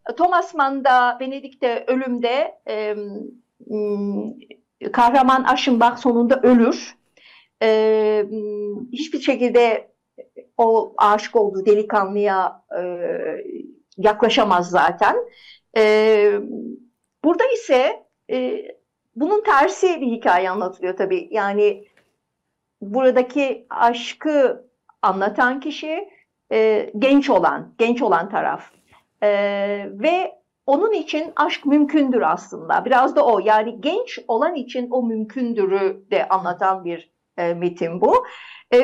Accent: native